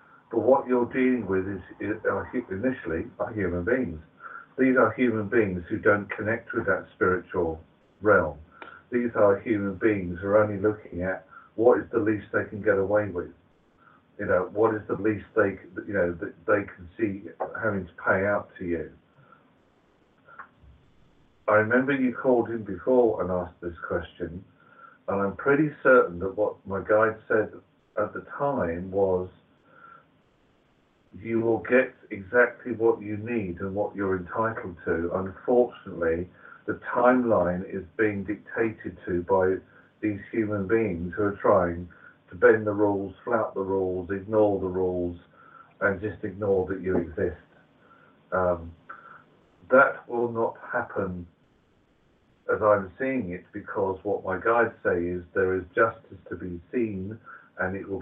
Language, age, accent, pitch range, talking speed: English, 50-69, British, 90-115 Hz, 150 wpm